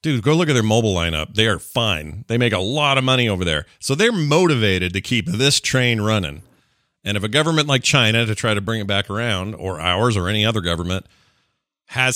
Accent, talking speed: American, 225 wpm